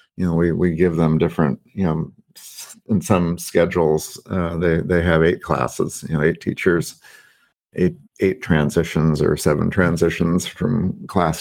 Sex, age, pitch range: male, 50-69, 80-95 Hz